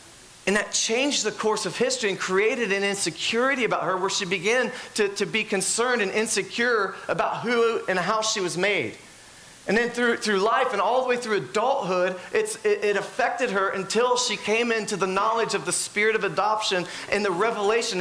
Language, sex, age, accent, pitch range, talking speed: English, male, 40-59, American, 200-255 Hz, 195 wpm